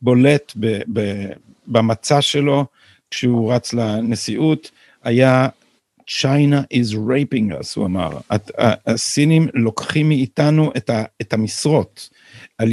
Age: 50-69